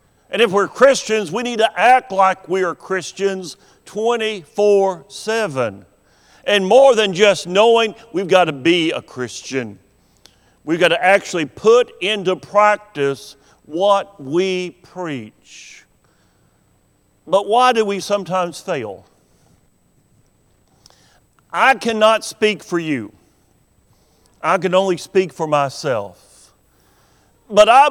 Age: 50-69